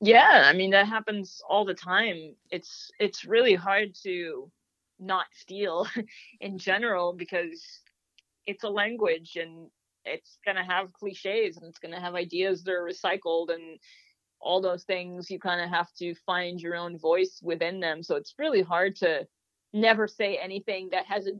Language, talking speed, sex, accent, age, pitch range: English, 170 wpm, female, American, 30-49, 175-205 Hz